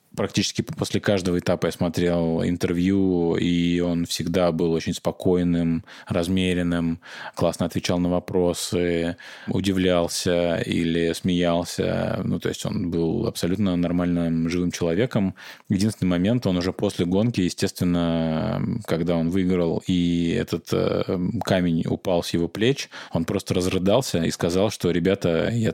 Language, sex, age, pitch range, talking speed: Russian, male, 20-39, 85-100 Hz, 130 wpm